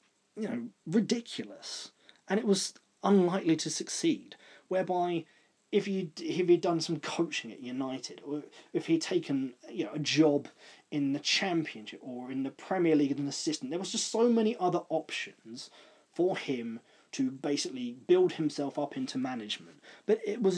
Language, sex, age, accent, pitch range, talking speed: English, male, 30-49, British, 135-190 Hz, 165 wpm